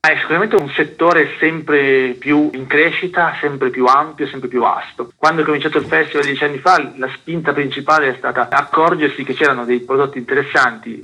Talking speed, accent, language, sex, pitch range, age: 180 wpm, native, Italian, male, 125-145 Hz, 30-49